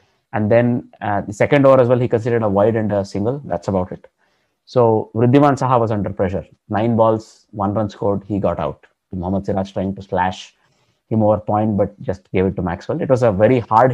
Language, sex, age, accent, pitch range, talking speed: English, male, 20-39, Indian, 105-135 Hz, 220 wpm